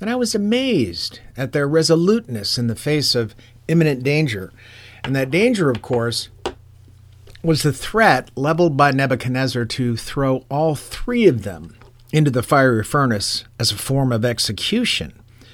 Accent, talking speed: American, 150 wpm